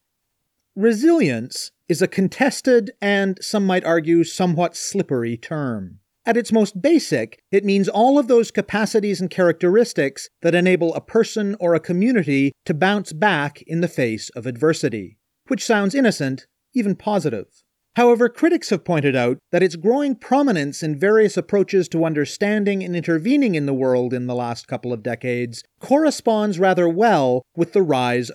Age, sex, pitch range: 40-59, male, 130-200 Hz